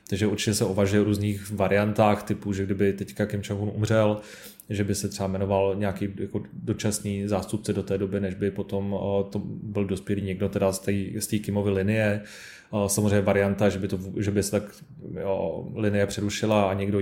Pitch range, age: 100-105 Hz, 20-39